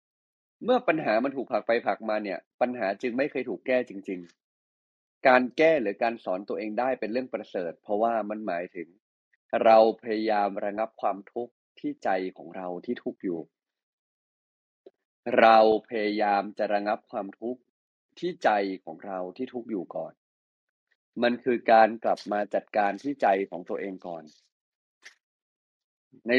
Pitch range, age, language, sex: 100-125 Hz, 20-39, Thai, male